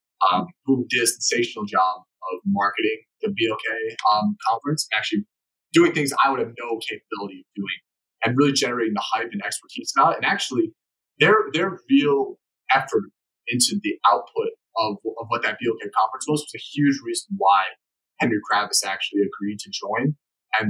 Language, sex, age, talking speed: English, male, 20-39, 180 wpm